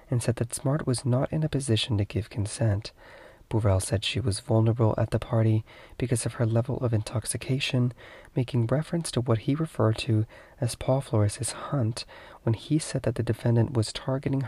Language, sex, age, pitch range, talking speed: English, male, 30-49, 110-125 Hz, 185 wpm